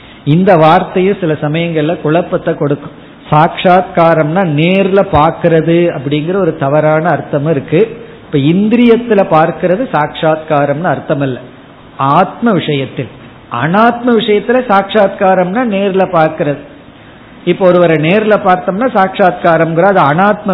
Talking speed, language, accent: 95 wpm, Tamil, native